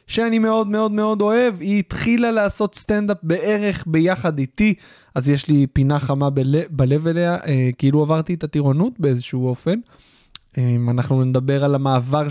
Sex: male